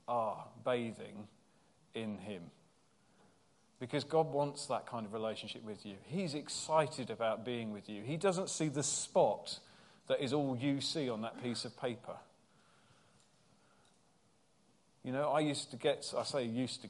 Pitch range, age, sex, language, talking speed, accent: 115-150 Hz, 40-59, male, English, 155 wpm, British